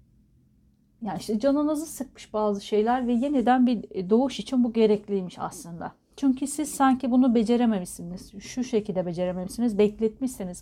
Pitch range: 185-235 Hz